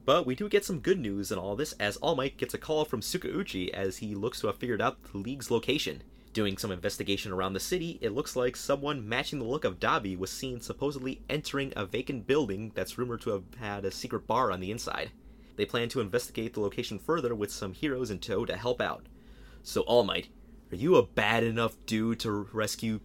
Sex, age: male, 30-49